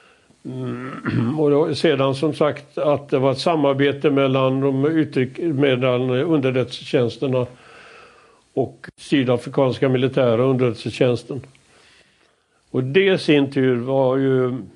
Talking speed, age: 100 wpm, 60-79